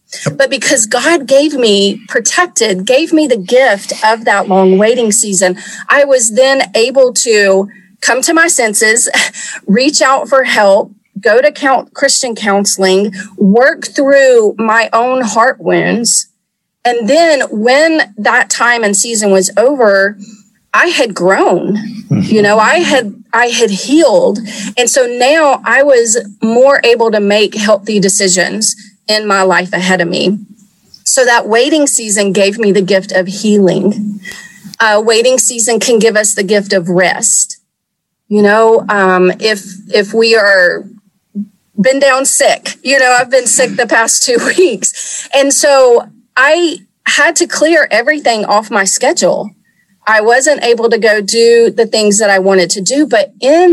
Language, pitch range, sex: English, 200-265 Hz, female